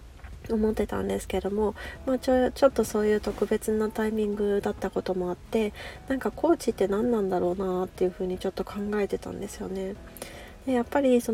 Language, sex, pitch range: Japanese, female, 195-235 Hz